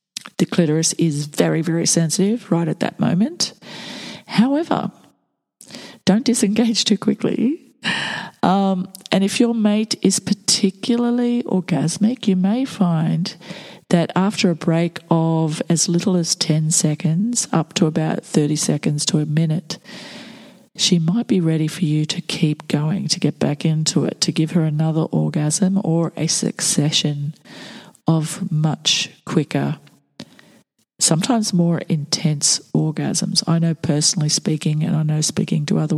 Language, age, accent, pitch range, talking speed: English, 40-59, Australian, 160-210 Hz, 140 wpm